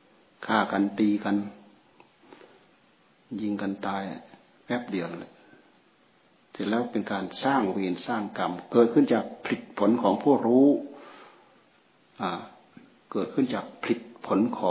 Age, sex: 60-79, male